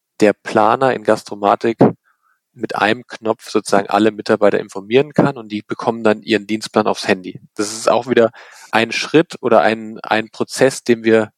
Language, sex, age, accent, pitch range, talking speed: German, male, 40-59, German, 110-130 Hz, 170 wpm